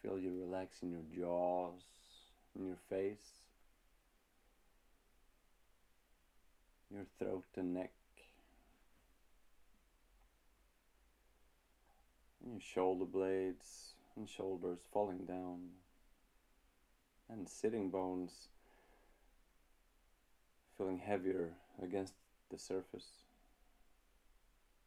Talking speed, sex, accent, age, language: 70 wpm, male, native, 30-49, Swedish